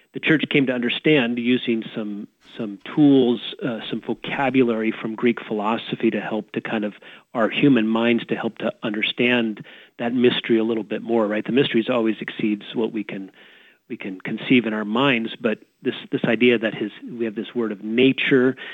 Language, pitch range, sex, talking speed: English, 110-120 Hz, male, 190 wpm